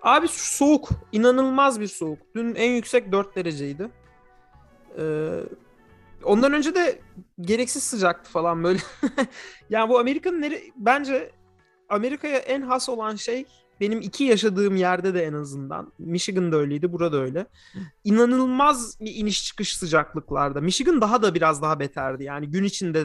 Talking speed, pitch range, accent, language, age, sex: 140 wpm, 165-230 Hz, native, Turkish, 30-49, male